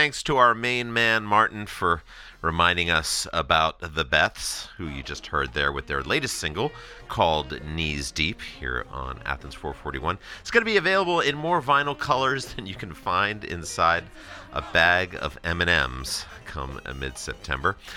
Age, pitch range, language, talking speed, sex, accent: 40-59, 75-125 Hz, English, 160 wpm, male, American